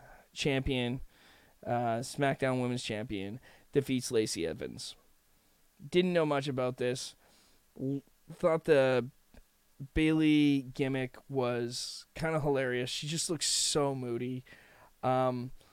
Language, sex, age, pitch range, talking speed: English, male, 20-39, 125-165 Hz, 105 wpm